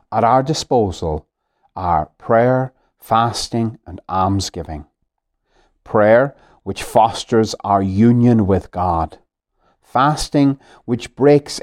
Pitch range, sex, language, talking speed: 105-130 Hz, male, English, 95 wpm